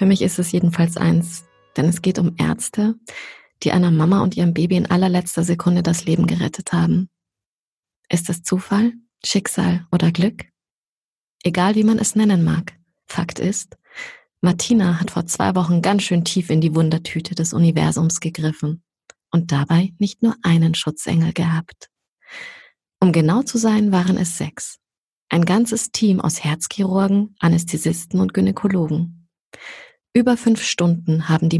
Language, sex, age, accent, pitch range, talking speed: German, female, 30-49, German, 165-195 Hz, 150 wpm